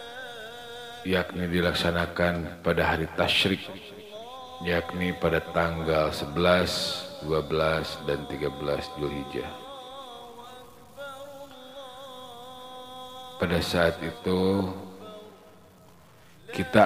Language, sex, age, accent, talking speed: Indonesian, male, 40-59, native, 60 wpm